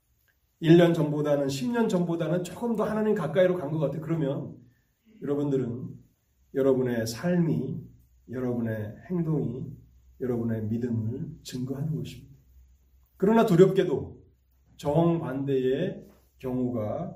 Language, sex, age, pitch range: Korean, male, 30-49, 115-150 Hz